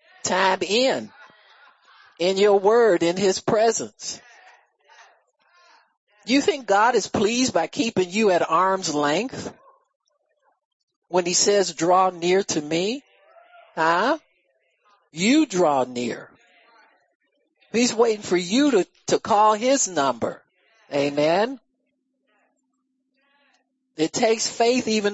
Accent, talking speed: American, 105 wpm